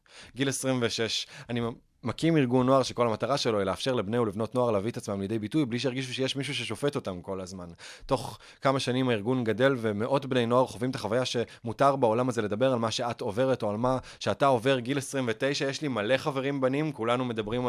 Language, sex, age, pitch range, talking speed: Hebrew, male, 20-39, 105-130 Hz, 205 wpm